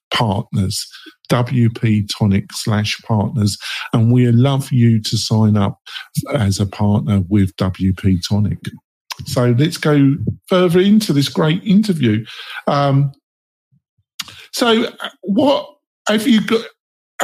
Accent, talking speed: British, 115 wpm